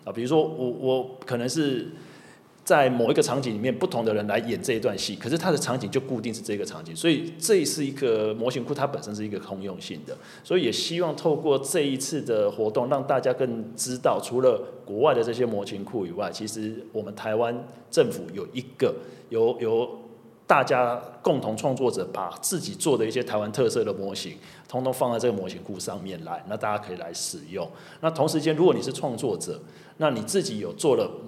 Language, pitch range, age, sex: Chinese, 110-150 Hz, 30-49, male